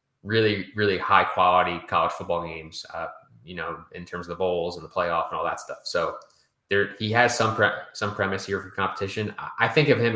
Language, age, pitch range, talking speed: English, 20-39, 90-105 Hz, 220 wpm